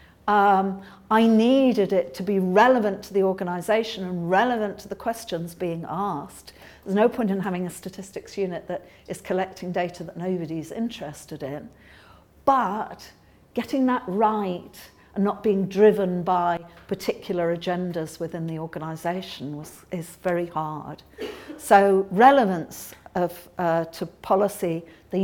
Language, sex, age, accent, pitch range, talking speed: English, female, 50-69, British, 175-215 Hz, 135 wpm